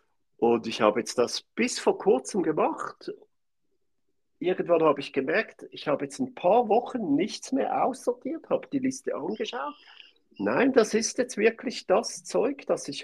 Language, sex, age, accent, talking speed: German, male, 50-69, German, 160 wpm